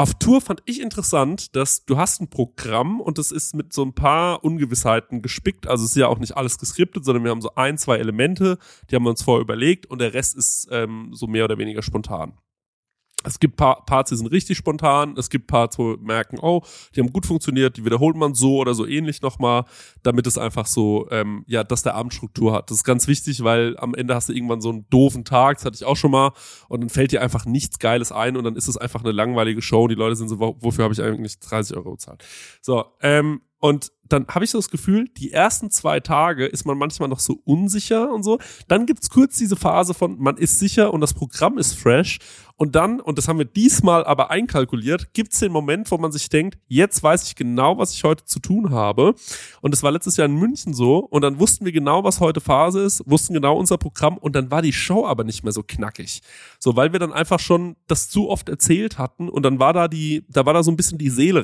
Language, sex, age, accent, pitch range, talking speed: German, male, 20-39, German, 120-170 Hz, 245 wpm